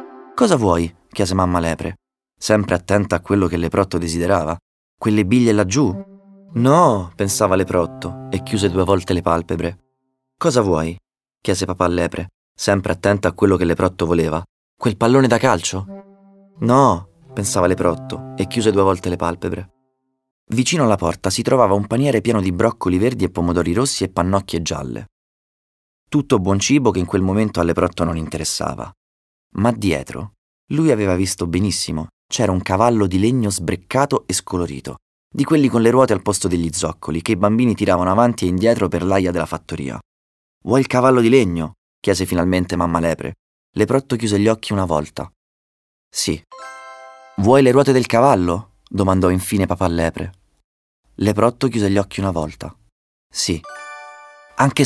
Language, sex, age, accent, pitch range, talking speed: Italian, male, 30-49, native, 85-120 Hz, 160 wpm